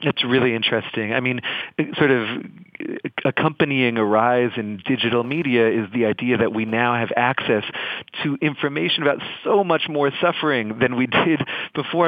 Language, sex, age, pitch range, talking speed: English, male, 40-59, 115-140 Hz, 160 wpm